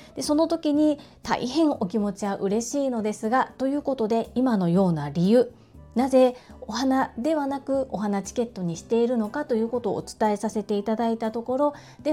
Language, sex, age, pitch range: Japanese, female, 40-59, 185-260 Hz